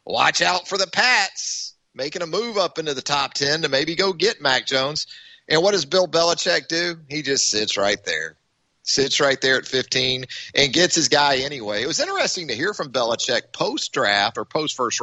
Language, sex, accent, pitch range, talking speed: English, male, American, 125-170 Hz, 200 wpm